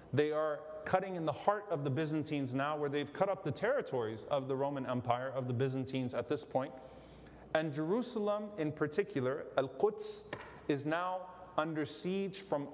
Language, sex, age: English, male, 30-49